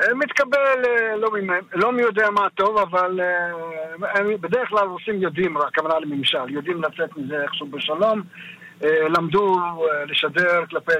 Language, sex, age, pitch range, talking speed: Hebrew, male, 60-79, 155-185 Hz, 125 wpm